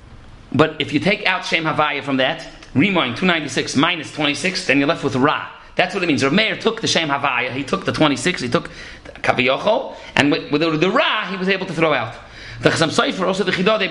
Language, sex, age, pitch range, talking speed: English, male, 40-59, 150-200 Hz, 225 wpm